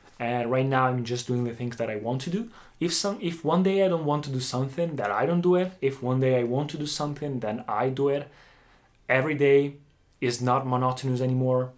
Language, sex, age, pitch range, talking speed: Italian, male, 20-39, 120-140 Hz, 240 wpm